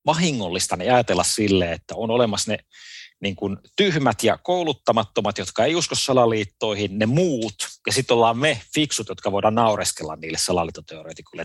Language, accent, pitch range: Finnish, native, 100-145 Hz